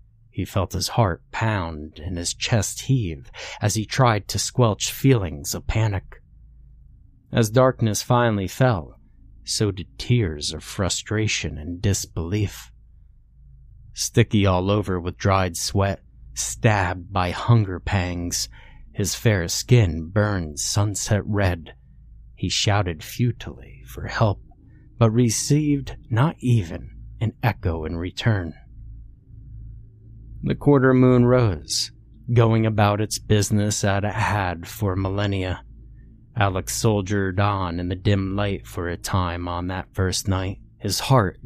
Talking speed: 125 wpm